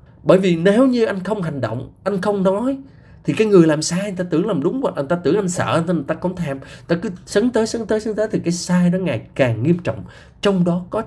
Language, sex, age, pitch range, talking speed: Vietnamese, male, 20-39, 135-195 Hz, 270 wpm